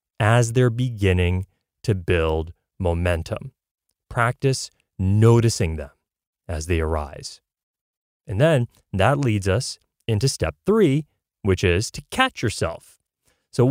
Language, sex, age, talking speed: English, male, 30-49, 115 wpm